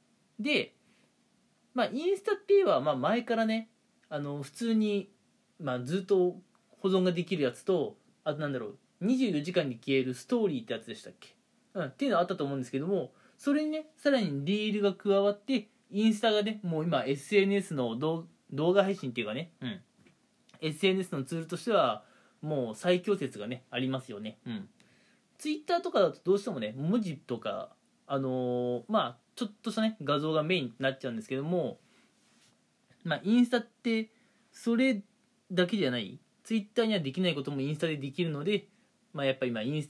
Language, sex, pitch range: Japanese, male, 145-230 Hz